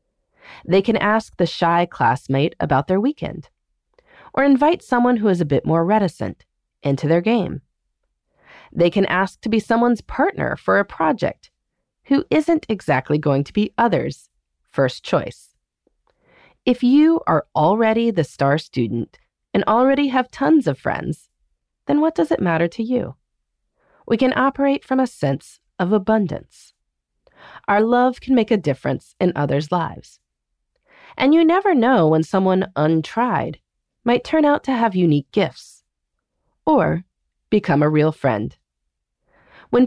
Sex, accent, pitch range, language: female, American, 155-255 Hz, English